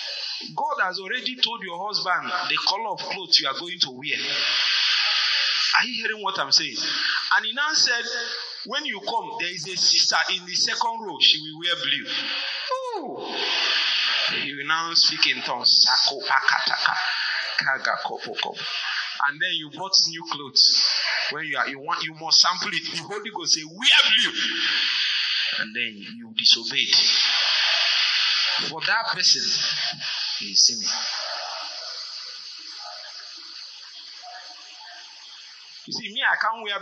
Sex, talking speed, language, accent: male, 130 wpm, English, Nigerian